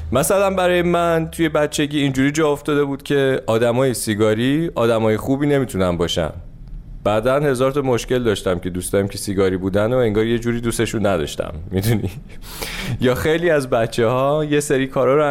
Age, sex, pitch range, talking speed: 30-49, male, 100-135 Hz, 165 wpm